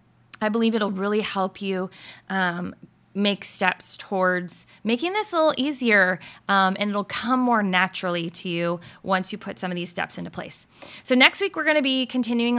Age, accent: 20-39, American